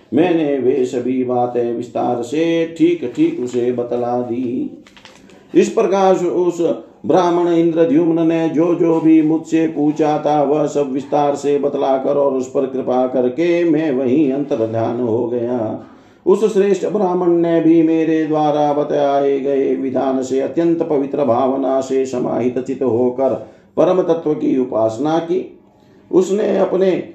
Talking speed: 140 wpm